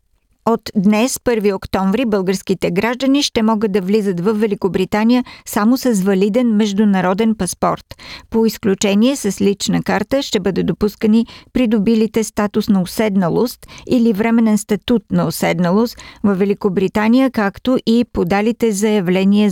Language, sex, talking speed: Bulgarian, female, 125 wpm